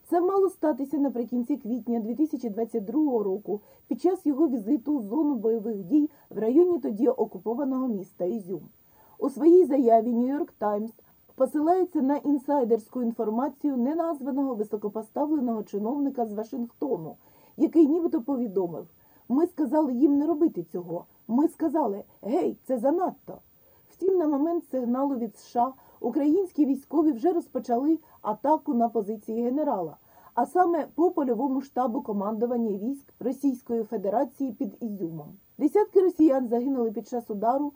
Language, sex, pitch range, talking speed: Ukrainian, female, 225-305 Hz, 130 wpm